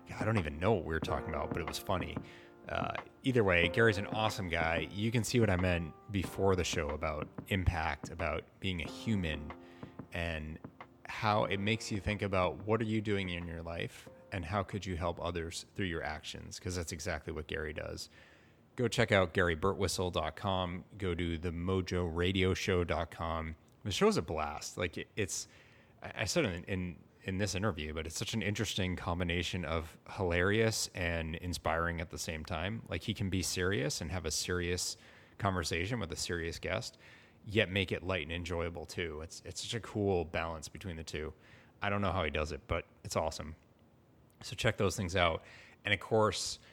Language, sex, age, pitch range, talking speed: English, male, 30-49, 85-105 Hz, 185 wpm